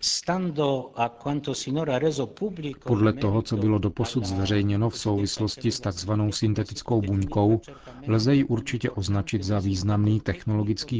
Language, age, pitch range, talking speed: Czech, 40-59, 100-115 Hz, 110 wpm